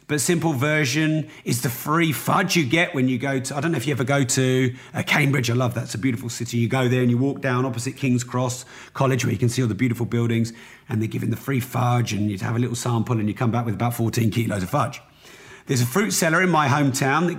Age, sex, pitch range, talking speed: 40-59, male, 120-160 Hz, 270 wpm